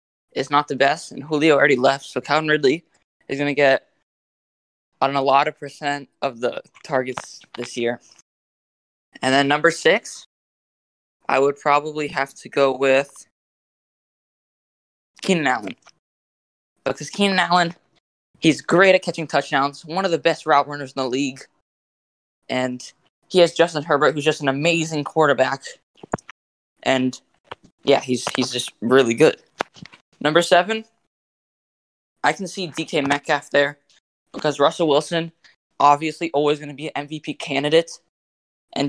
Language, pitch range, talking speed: English, 135-160 Hz, 140 wpm